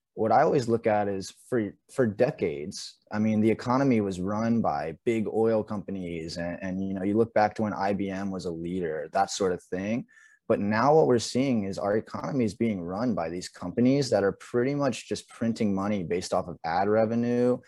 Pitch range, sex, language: 95-115 Hz, male, English